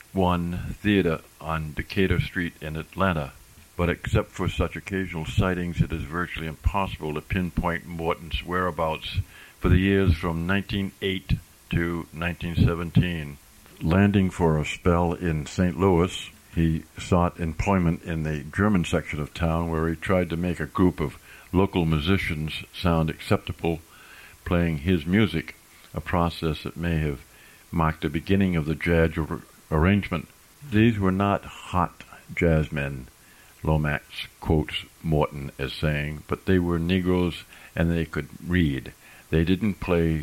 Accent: American